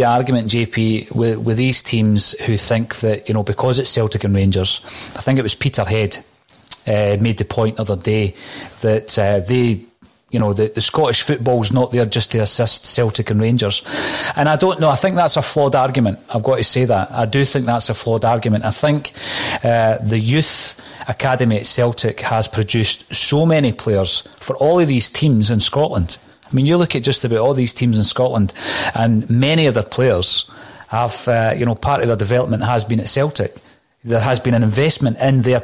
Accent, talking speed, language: British, 210 wpm, English